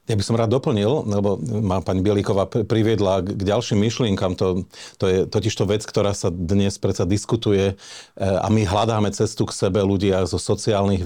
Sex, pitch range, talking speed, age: male, 95-115 Hz, 175 wpm, 40-59